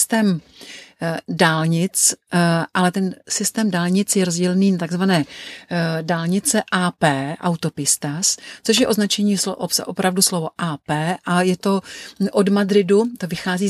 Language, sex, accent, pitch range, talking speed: Czech, female, native, 170-200 Hz, 115 wpm